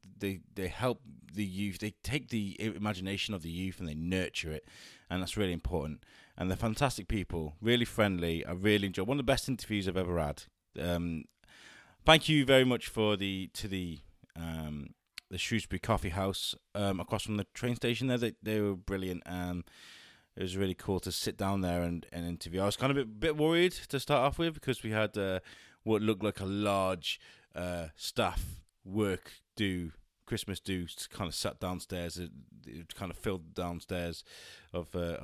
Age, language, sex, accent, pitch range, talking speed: 20-39, English, male, British, 90-110 Hz, 190 wpm